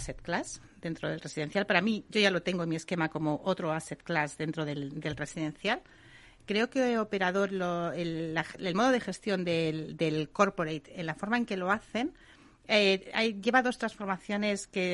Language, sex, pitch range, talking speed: Spanish, female, 170-210 Hz, 195 wpm